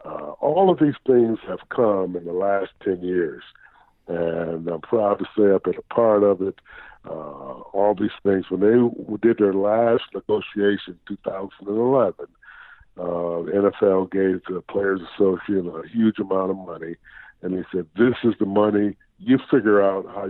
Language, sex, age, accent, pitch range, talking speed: English, male, 50-69, American, 90-110 Hz, 170 wpm